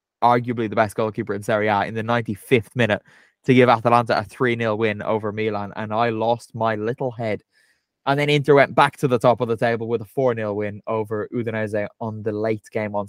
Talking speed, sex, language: 215 wpm, male, English